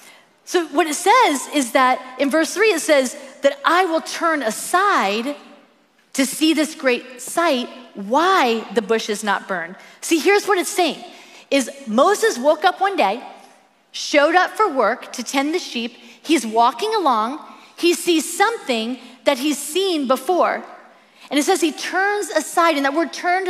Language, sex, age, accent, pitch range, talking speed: English, female, 40-59, American, 250-355 Hz, 170 wpm